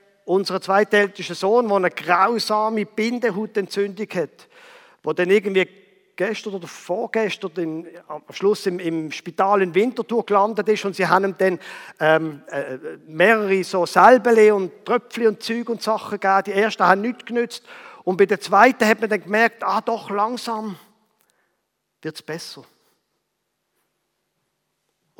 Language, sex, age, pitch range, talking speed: German, male, 50-69, 180-220 Hz, 145 wpm